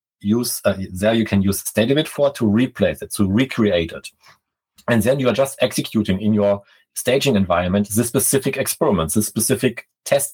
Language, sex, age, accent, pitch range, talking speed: English, male, 40-59, German, 100-115 Hz, 185 wpm